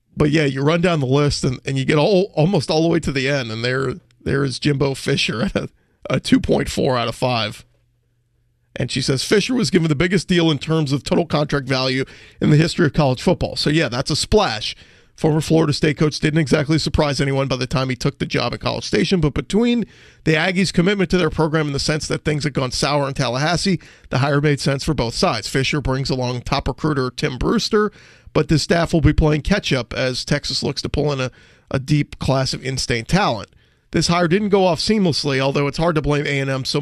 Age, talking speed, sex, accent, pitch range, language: 40-59, 230 wpm, male, American, 135-170 Hz, English